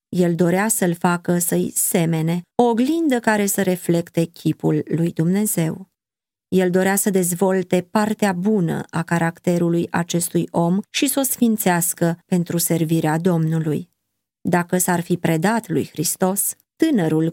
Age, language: 20-39, Romanian